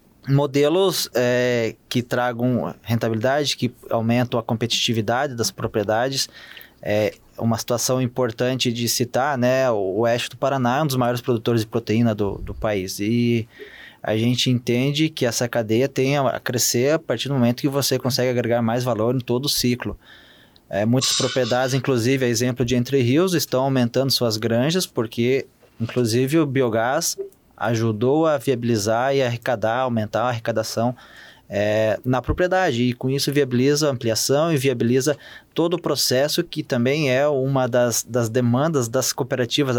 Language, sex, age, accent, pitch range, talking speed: Portuguese, male, 20-39, Brazilian, 115-135 Hz, 150 wpm